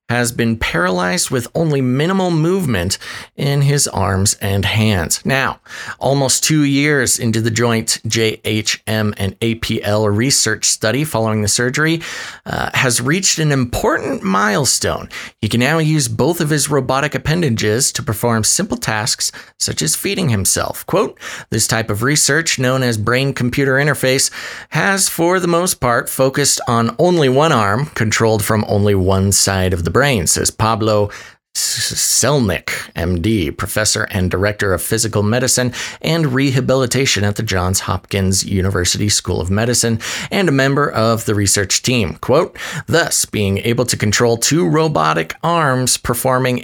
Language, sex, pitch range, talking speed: English, male, 105-140 Hz, 145 wpm